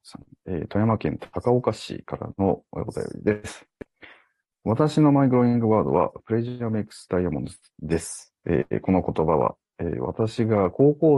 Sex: male